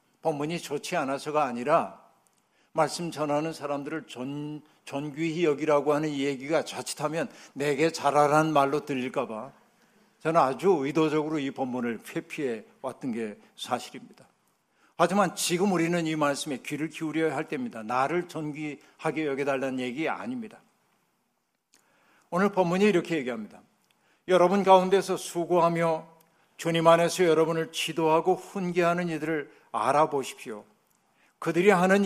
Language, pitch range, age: Korean, 140-170 Hz, 60-79